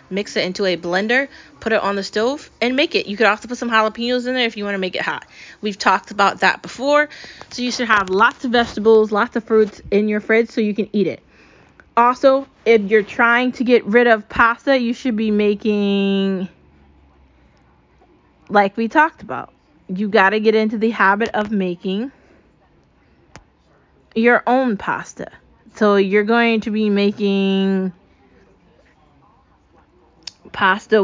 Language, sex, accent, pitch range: English, female, American, 205-255 Hz